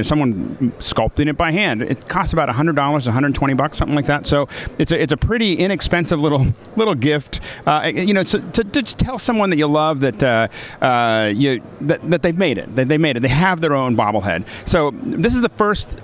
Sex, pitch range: male, 125-170 Hz